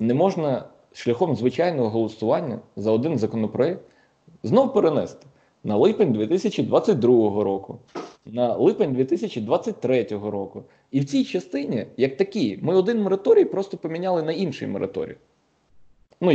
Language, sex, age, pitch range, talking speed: Ukrainian, male, 20-39, 115-160 Hz, 120 wpm